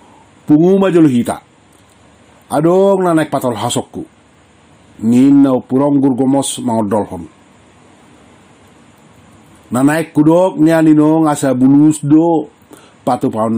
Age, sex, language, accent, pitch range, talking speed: 50-69, male, Indonesian, native, 125-155 Hz, 95 wpm